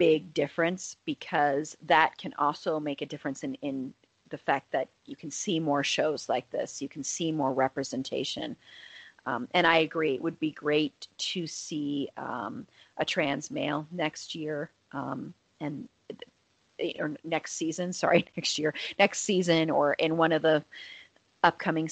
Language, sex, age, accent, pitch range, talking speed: English, female, 30-49, American, 150-185 Hz, 160 wpm